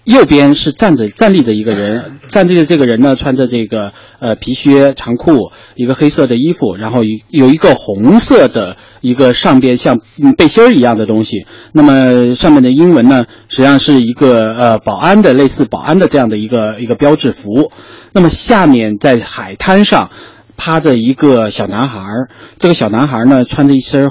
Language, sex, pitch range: Chinese, male, 115-155 Hz